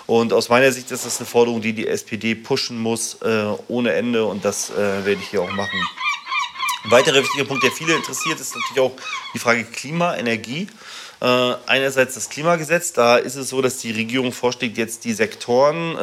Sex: male